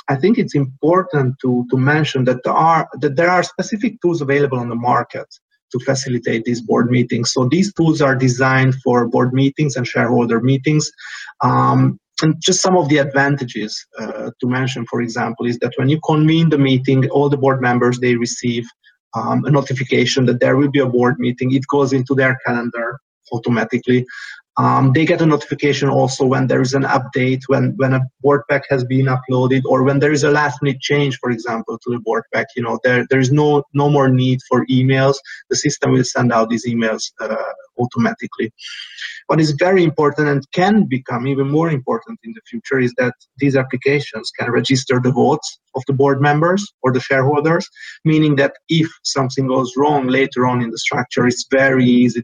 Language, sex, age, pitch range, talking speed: English, male, 30-49, 125-145 Hz, 195 wpm